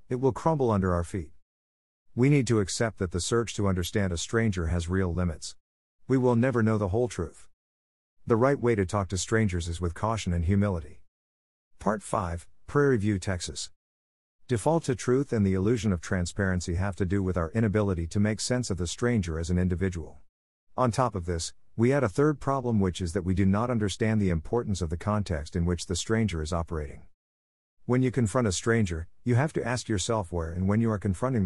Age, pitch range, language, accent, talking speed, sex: 50-69, 85-115 Hz, English, American, 210 wpm, male